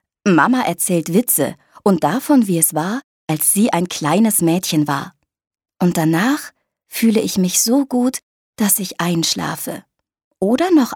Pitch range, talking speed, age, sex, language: 155-225 Hz, 140 wpm, 20-39, female, German